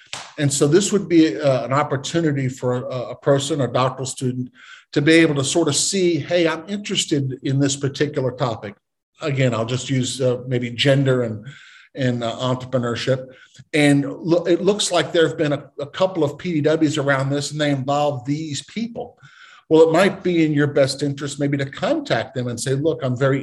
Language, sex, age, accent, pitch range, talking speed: English, male, 50-69, American, 130-155 Hz, 195 wpm